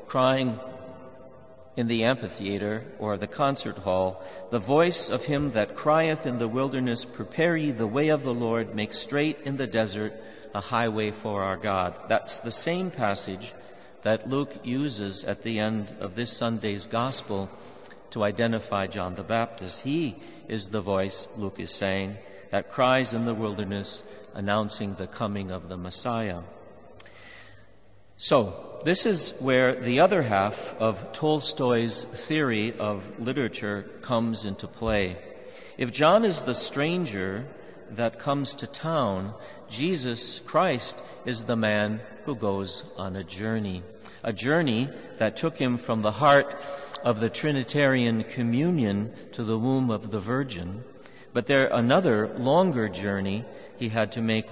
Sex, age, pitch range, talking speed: male, 50-69, 100-130 Hz, 145 wpm